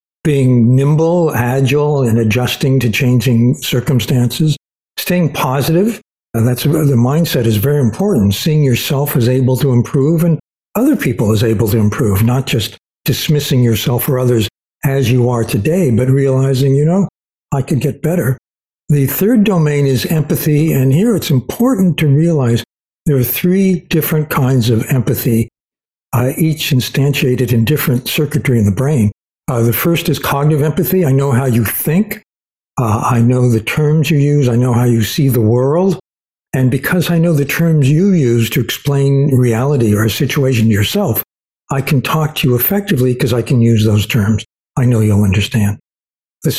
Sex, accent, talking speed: male, American, 170 wpm